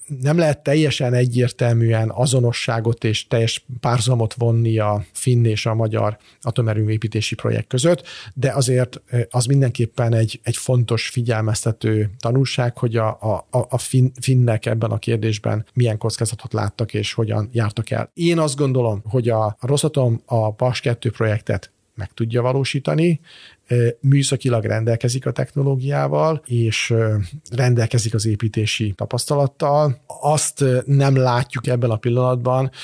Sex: male